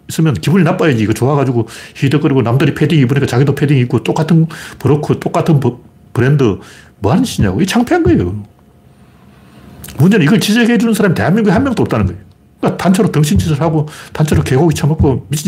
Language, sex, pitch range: Korean, male, 110-155 Hz